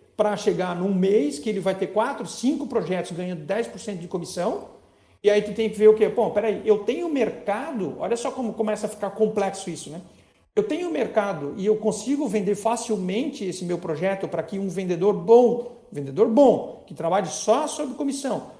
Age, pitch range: 50-69, 180-235 Hz